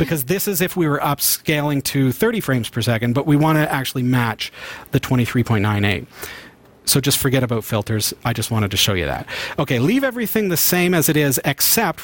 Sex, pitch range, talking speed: male, 125-160 Hz, 205 wpm